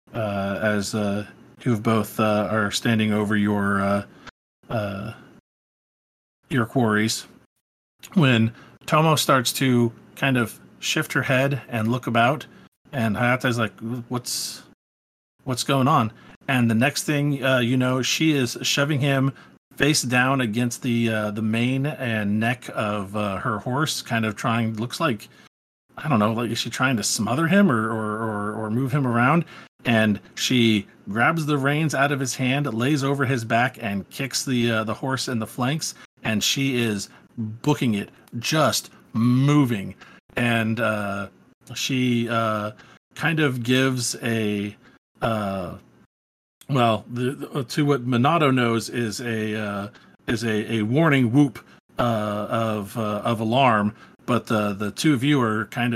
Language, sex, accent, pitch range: English, male, American, 110-130 Hz